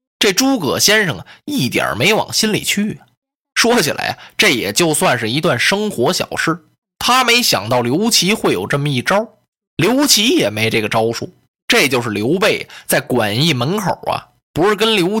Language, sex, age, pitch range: Chinese, male, 20-39, 120-200 Hz